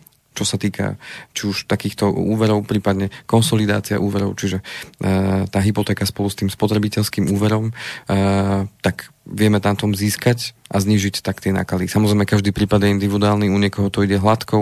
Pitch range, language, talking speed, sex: 100-105 Hz, Slovak, 165 wpm, male